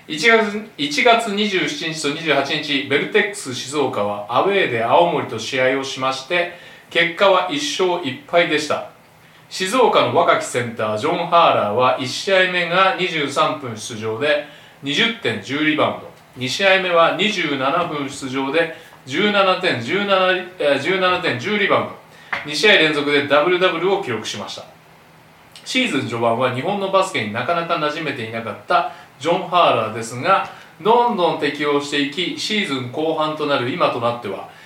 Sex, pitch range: male, 140-190 Hz